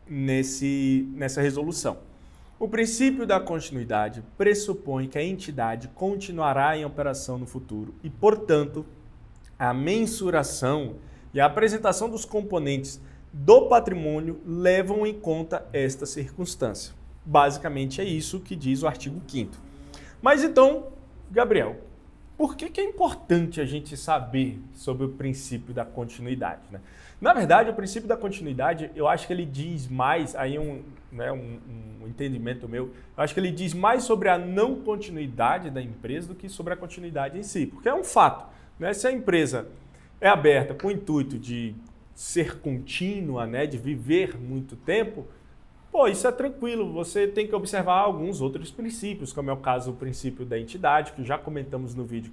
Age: 20-39